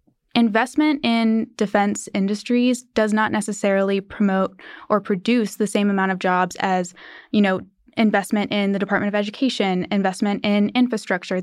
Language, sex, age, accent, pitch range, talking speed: English, female, 10-29, American, 190-225 Hz, 140 wpm